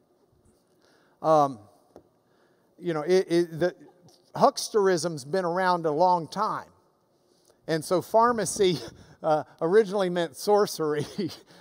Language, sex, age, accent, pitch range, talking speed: English, male, 50-69, American, 170-250 Hz, 105 wpm